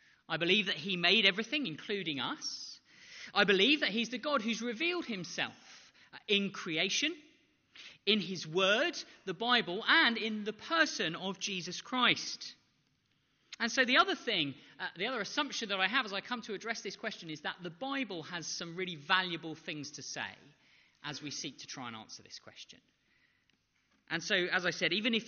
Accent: British